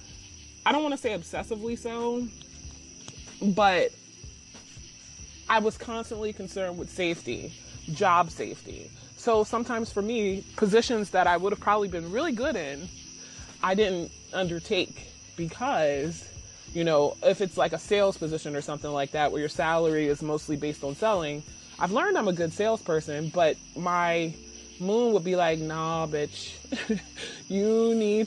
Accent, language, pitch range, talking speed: American, English, 150-200 Hz, 150 wpm